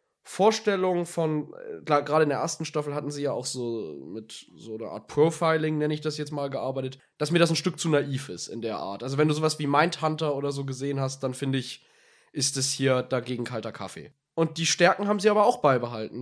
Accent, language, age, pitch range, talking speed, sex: German, German, 20-39, 145-180 Hz, 230 wpm, male